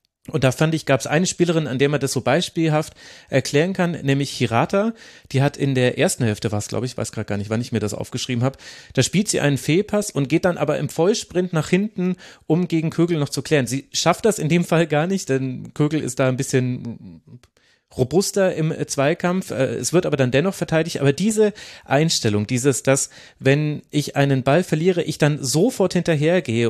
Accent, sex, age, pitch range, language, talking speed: German, male, 30-49, 130-165 Hz, German, 210 wpm